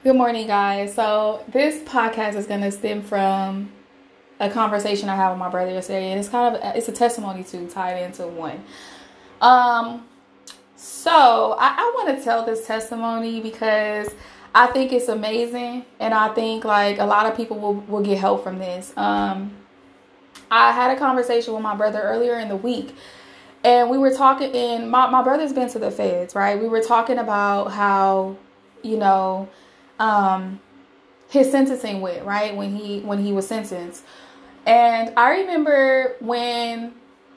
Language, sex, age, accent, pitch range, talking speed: English, female, 20-39, American, 190-240 Hz, 170 wpm